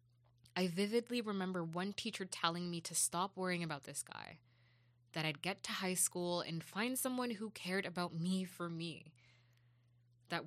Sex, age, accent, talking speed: female, 20-39, American, 165 wpm